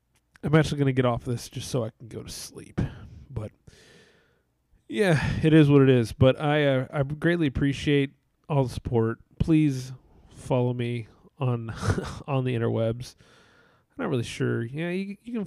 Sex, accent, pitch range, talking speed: male, American, 115-140 Hz, 170 wpm